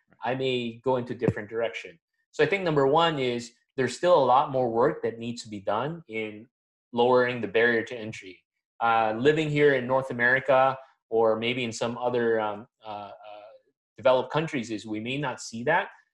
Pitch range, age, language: 115-150 Hz, 30-49, English